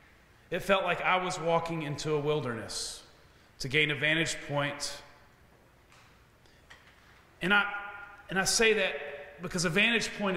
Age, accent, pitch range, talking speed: 40-59, American, 145-185 Hz, 135 wpm